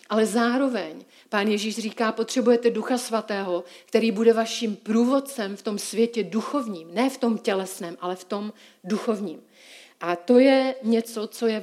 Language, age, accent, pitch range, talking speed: Czech, 40-59, native, 195-230 Hz, 155 wpm